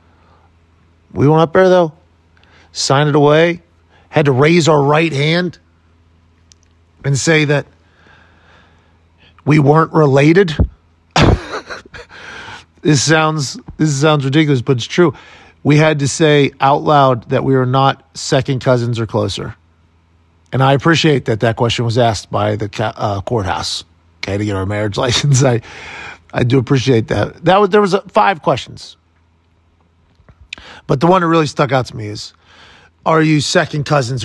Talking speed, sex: 150 wpm, male